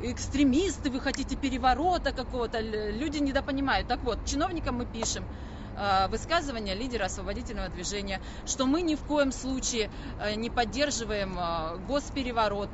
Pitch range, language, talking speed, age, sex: 205-275 Hz, Russian, 120 wpm, 20-39, female